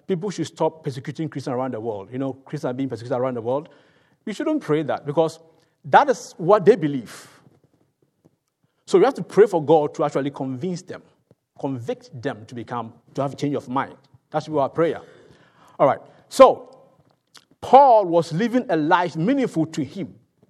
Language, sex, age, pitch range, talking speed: English, male, 50-69, 140-190 Hz, 185 wpm